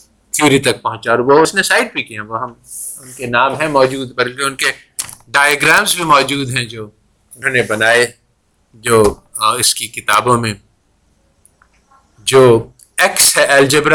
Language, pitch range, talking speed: Urdu, 110-150 Hz, 130 wpm